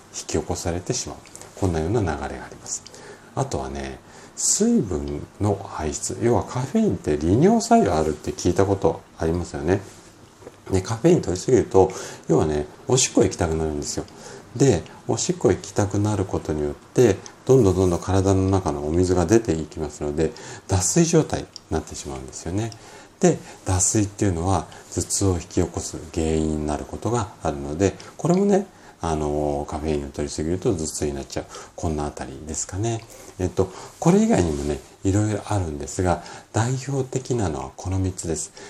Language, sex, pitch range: Japanese, male, 80-105 Hz